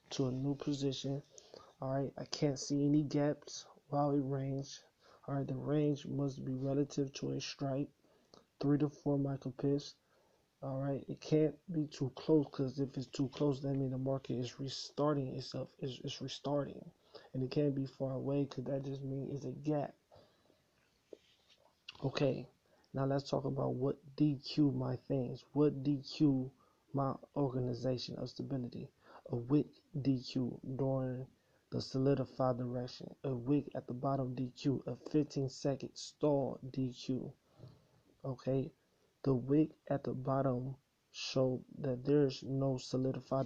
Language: English